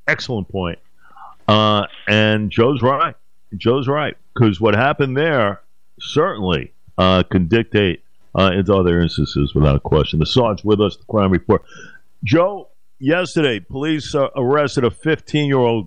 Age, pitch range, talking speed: 50-69, 100-130 Hz, 135 wpm